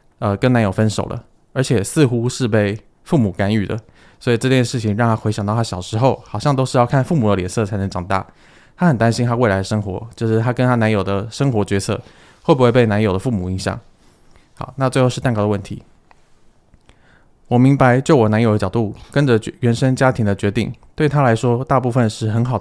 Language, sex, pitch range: Chinese, male, 100-125 Hz